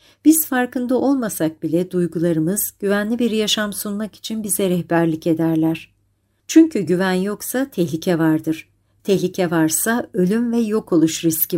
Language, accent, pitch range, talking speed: Turkish, native, 165-210 Hz, 130 wpm